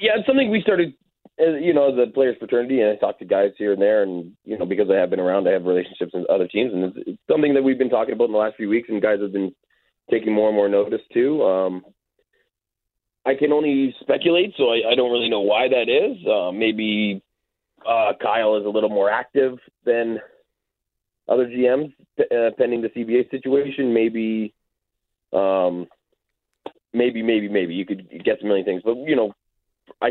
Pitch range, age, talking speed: 100-130 Hz, 30-49, 200 wpm